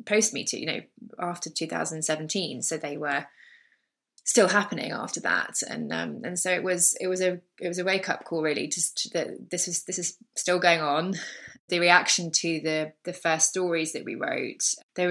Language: English